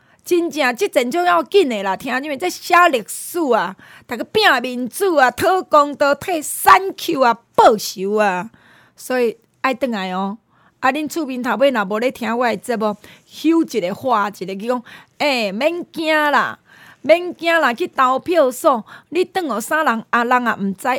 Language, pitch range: Chinese, 215-305 Hz